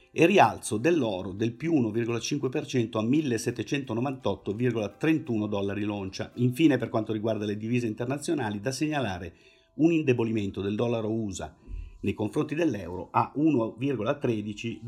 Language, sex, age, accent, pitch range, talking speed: Italian, male, 50-69, native, 105-130 Hz, 115 wpm